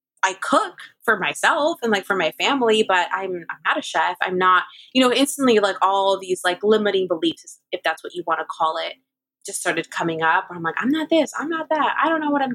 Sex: female